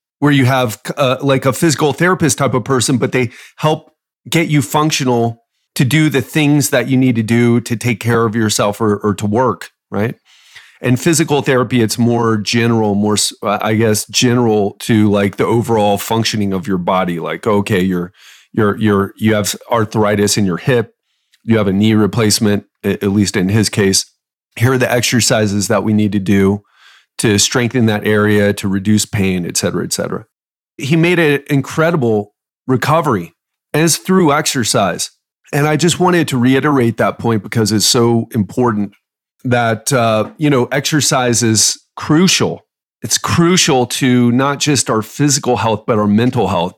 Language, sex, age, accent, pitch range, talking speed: English, male, 30-49, American, 105-140 Hz, 170 wpm